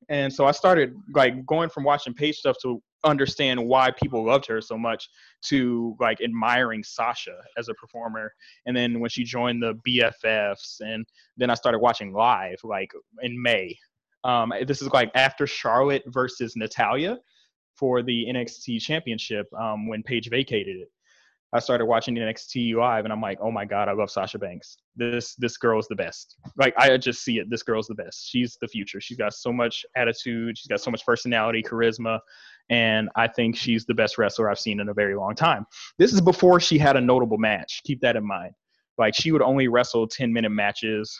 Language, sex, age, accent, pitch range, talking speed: English, male, 20-39, American, 115-130 Hz, 195 wpm